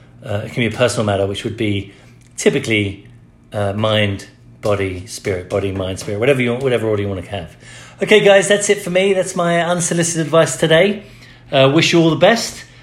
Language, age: English, 40-59